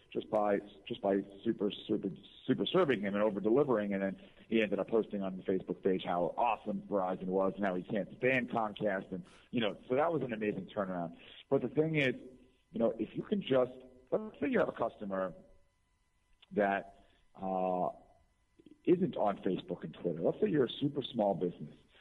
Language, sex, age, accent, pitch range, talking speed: English, male, 50-69, American, 95-115 Hz, 195 wpm